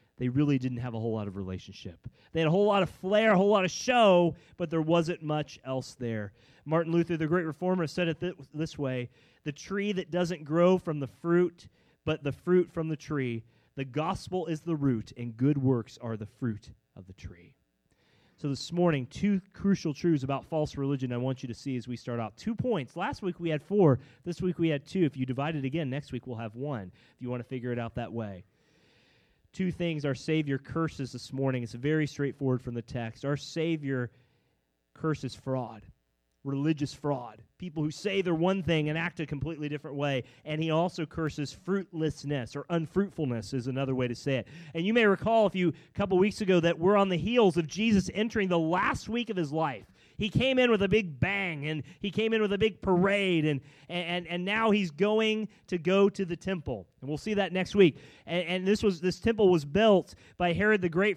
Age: 30-49